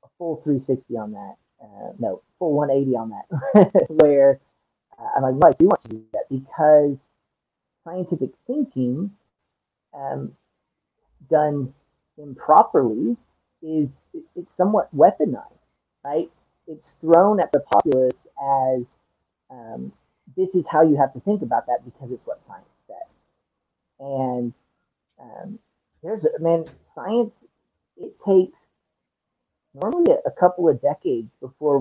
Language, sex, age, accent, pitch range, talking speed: English, male, 40-59, American, 125-160 Hz, 125 wpm